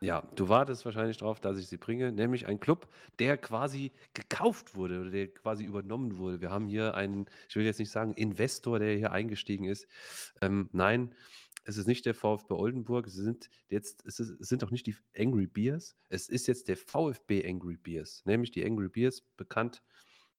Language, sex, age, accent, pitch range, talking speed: German, male, 40-59, German, 100-125 Hz, 195 wpm